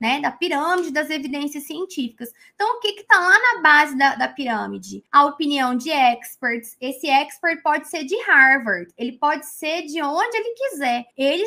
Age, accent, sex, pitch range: 20-39, Brazilian, female, 255-330 Hz